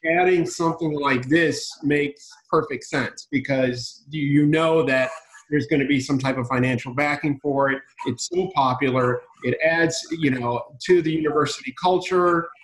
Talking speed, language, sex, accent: 155 wpm, English, male, American